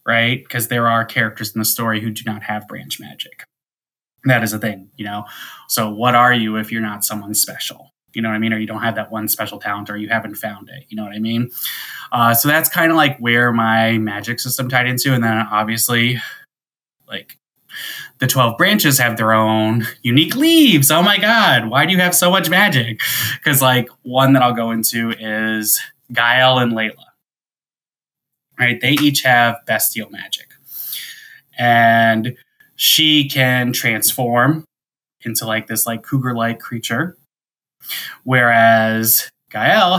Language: English